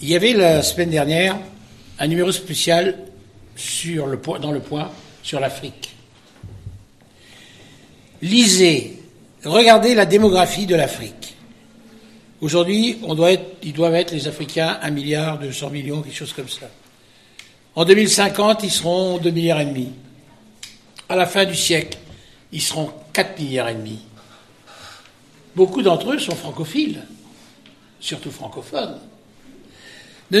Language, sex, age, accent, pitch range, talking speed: French, male, 60-79, French, 150-225 Hz, 130 wpm